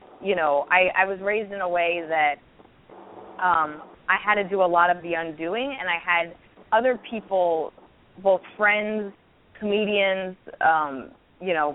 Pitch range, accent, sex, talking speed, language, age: 160-195 Hz, American, female, 160 wpm, English, 20-39